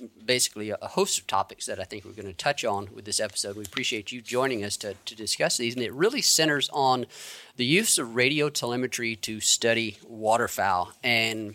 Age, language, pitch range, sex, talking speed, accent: 40-59, English, 110-135 Hz, male, 205 wpm, American